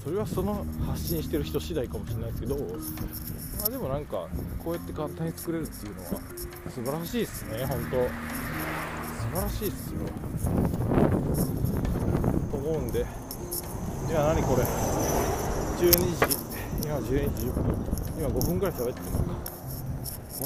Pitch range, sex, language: 85-140 Hz, male, Japanese